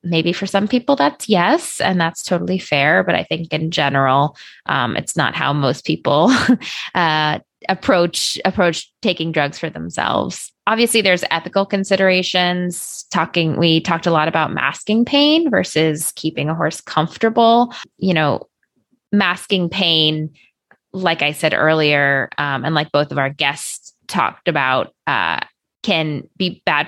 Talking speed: 145 wpm